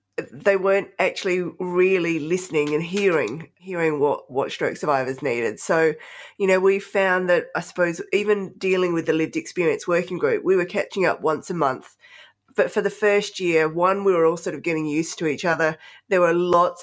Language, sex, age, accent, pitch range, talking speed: English, female, 20-39, Australian, 160-200 Hz, 195 wpm